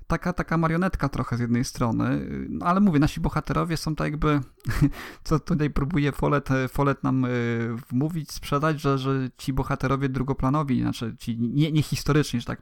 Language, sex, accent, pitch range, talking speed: Polish, male, native, 125-145 Hz, 155 wpm